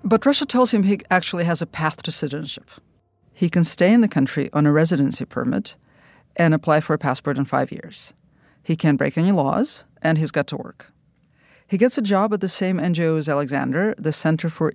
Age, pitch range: 50-69, 145-180 Hz